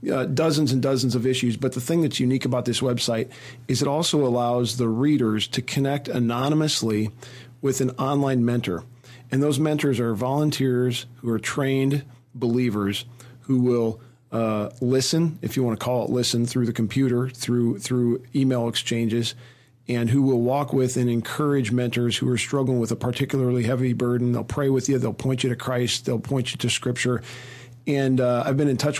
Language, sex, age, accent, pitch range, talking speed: English, male, 40-59, American, 120-135 Hz, 185 wpm